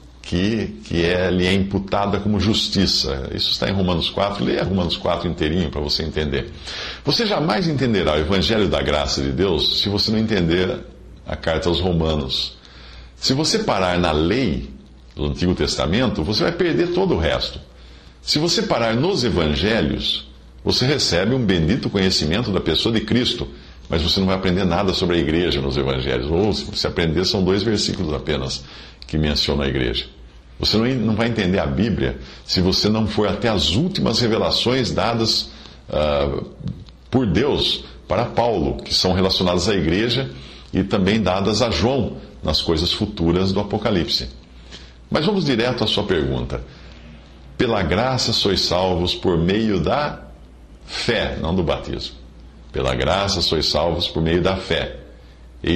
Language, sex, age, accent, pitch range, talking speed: English, male, 60-79, Brazilian, 70-95 Hz, 160 wpm